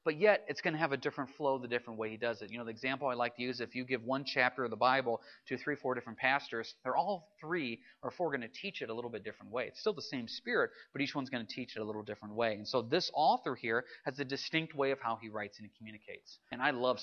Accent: American